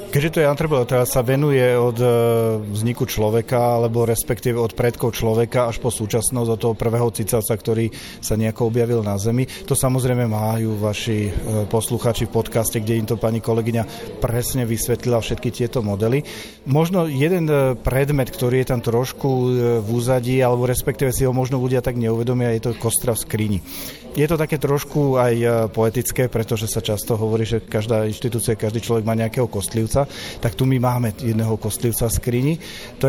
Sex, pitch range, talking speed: male, 115-130 Hz, 170 wpm